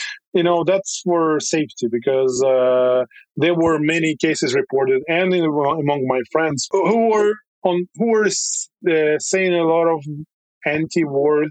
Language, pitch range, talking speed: English, 135-165 Hz, 145 wpm